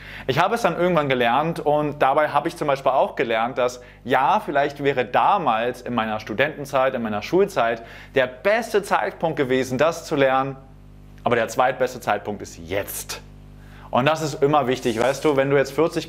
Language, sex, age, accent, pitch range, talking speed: German, male, 30-49, German, 125-145 Hz, 185 wpm